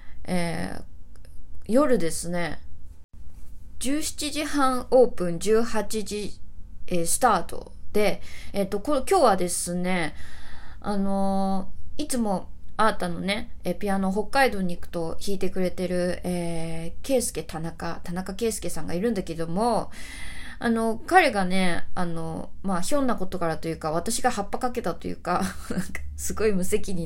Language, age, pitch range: Japanese, 20-39, 170-225 Hz